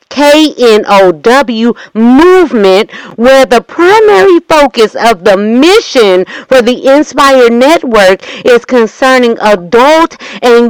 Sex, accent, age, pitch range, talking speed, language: female, American, 40-59, 230-290 Hz, 95 wpm, English